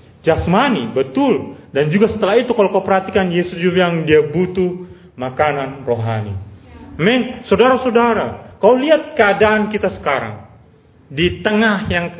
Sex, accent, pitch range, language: male, native, 180-240 Hz, Indonesian